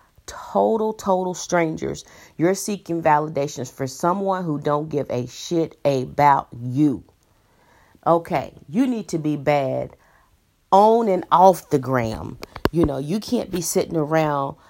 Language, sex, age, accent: English, female, 40-59, American